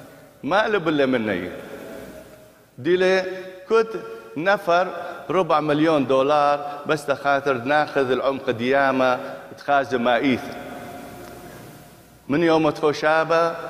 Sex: male